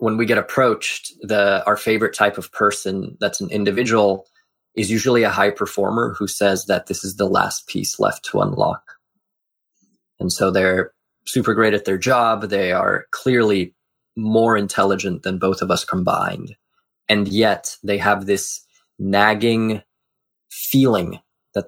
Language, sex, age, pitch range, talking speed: English, male, 20-39, 100-115 Hz, 150 wpm